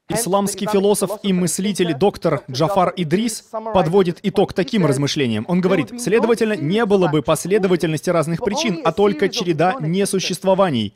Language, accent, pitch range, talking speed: Russian, native, 155-210 Hz, 130 wpm